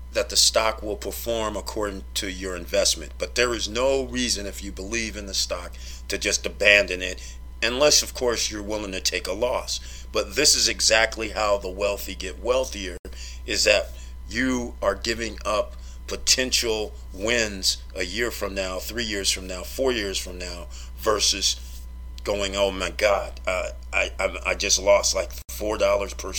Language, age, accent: English, 40-59, American